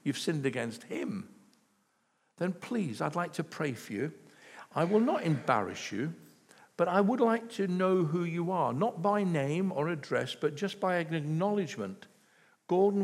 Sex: male